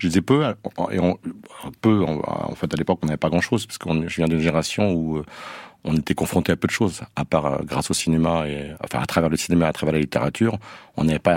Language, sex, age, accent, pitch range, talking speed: French, male, 50-69, French, 80-95 Hz, 235 wpm